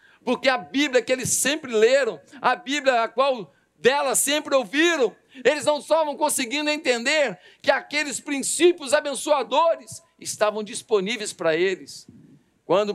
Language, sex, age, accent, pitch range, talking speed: Portuguese, male, 50-69, Brazilian, 195-285 Hz, 130 wpm